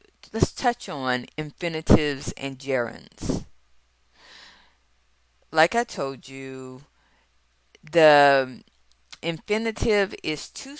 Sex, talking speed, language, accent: female, 80 wpm, English, American